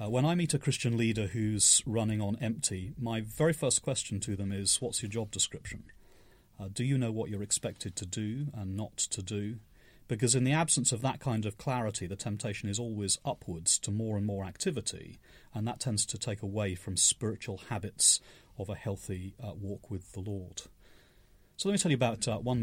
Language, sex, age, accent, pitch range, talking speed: English, male, 30-49, British, 95-120 Hz, 210 wpm